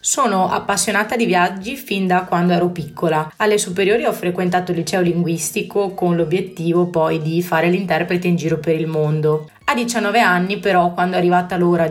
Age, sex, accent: 20-39, female, native